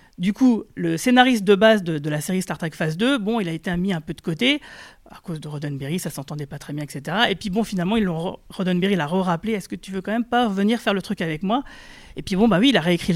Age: 40-59